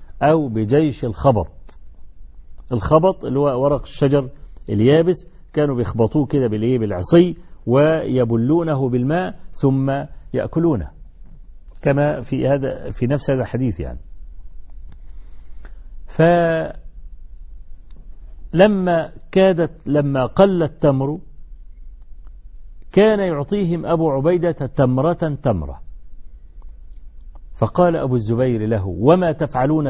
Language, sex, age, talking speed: Arabic, male, 50-69, 90 wpm